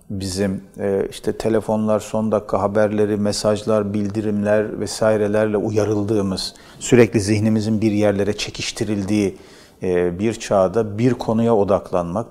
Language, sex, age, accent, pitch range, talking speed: Turkish, male, 40-59, native, 95-110 Hz, 100 wpm